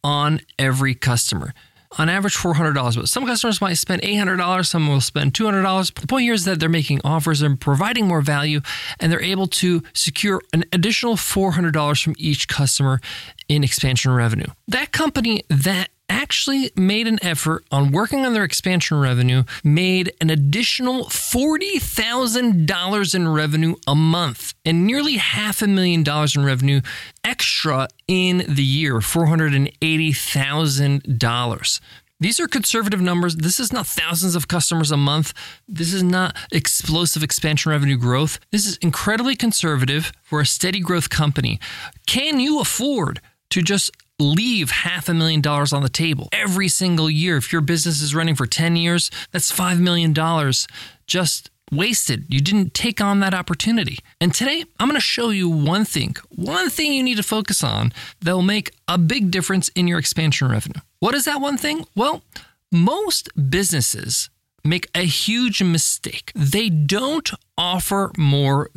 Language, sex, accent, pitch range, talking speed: English, male, American, 145-195 Hz, 160 wpm